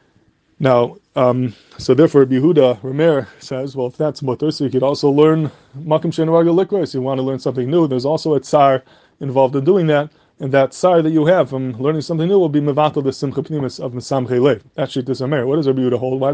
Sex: male